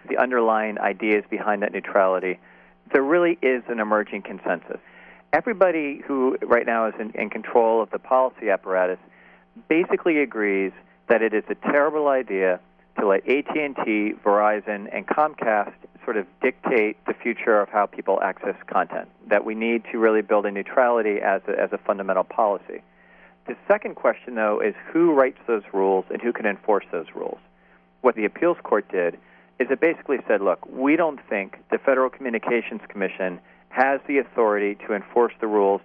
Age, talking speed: 40-59, 165 wpm